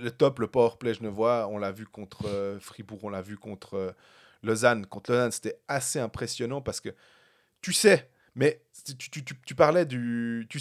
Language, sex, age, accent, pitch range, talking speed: French, male, 30-49, French, 140-195 Hz, 205 wpm